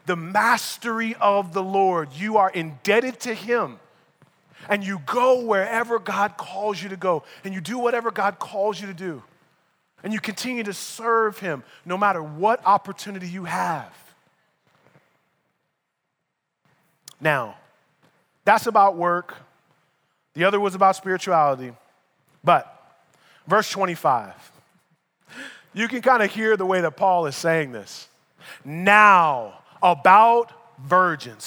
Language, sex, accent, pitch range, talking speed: English, male, American, 175-230 Hz, 130 wpm